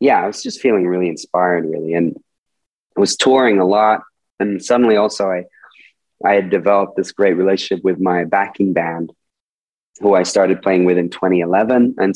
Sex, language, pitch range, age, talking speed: male, English, 90-105 Hz, 20-39, 180 wpm